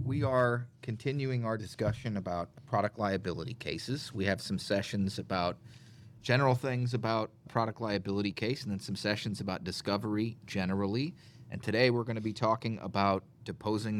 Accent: American